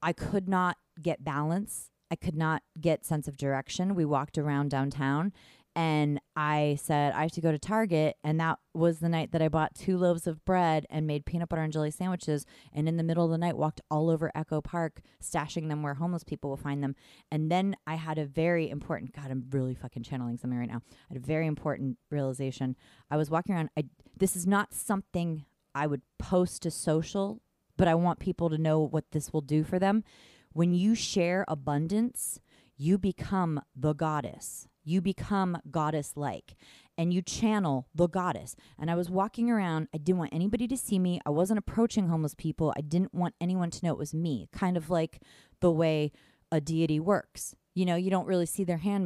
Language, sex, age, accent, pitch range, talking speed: English, female, 30-49, American, 150-180 Hz, 205 wpm